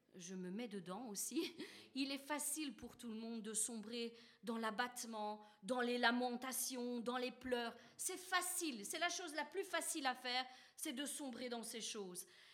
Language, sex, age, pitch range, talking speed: French, female, 40-59, 235-295 Hz, 180 wpm